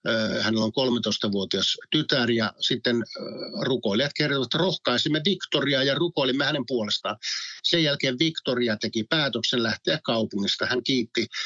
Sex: male